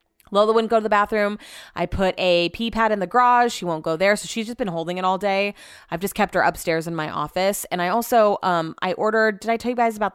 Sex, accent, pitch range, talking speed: female, American, 175-230 Hz, 270 wpm